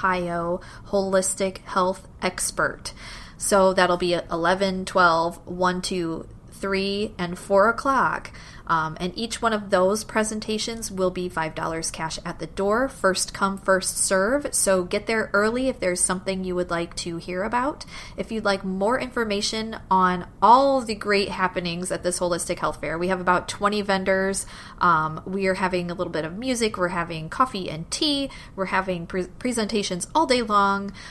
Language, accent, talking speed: English, American, 170 wpm